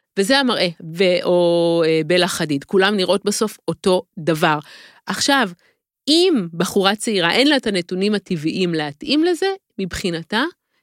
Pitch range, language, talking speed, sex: 180-255 Hz, Hebrew, 120 wpm, female